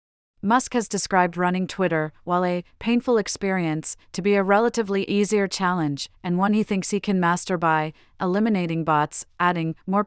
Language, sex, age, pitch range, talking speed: English, female, 40-59, 165-200 Hz, 160 wpm